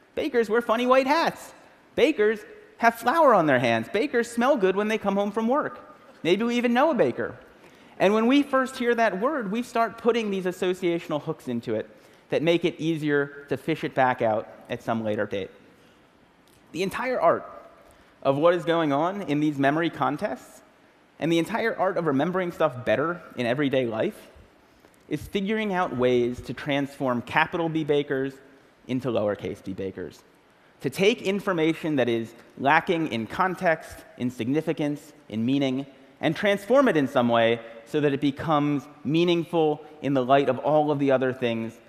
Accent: American